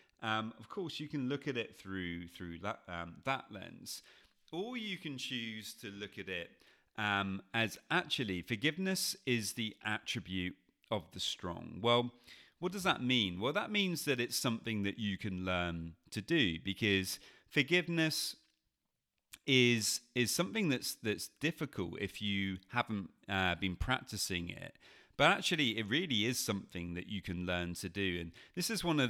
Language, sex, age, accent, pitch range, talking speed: English, male, 30-49, British, 95-130 Hz, 165 wpm